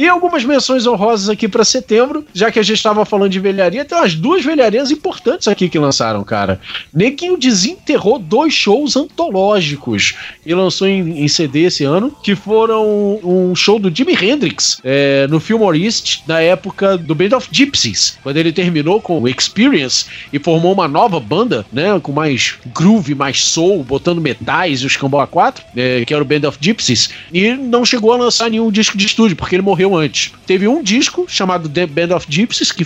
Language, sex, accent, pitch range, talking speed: Portuguese, male, Brazilian, 155-245 Hz, 190 wpm